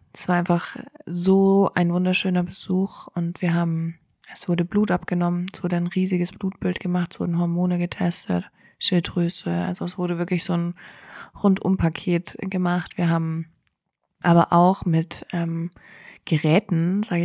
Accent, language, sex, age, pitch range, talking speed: German, German, female, 20-39, 170-185 Hz, 145 wpm